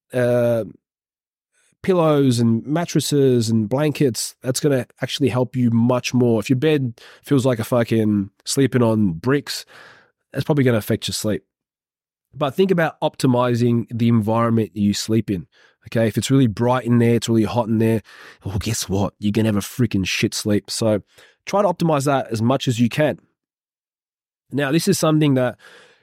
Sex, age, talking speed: male, 20-39, 180 wpm